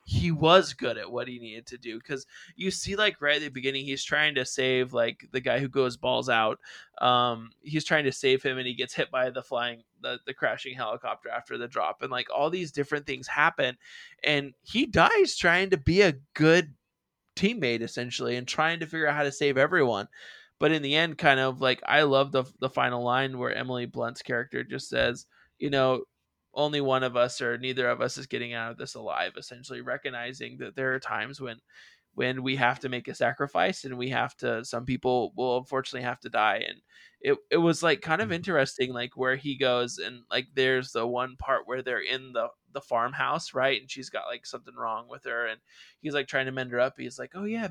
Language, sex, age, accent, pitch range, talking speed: English, male, 20-39, American, 125-155 Hz, 225 wpm